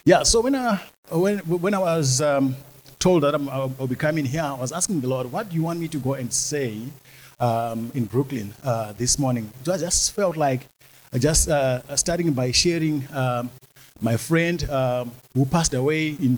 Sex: male